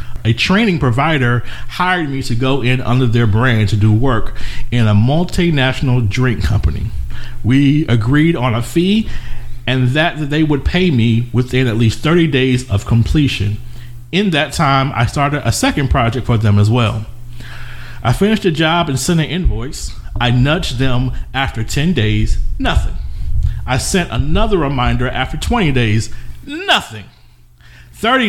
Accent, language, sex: American, English, male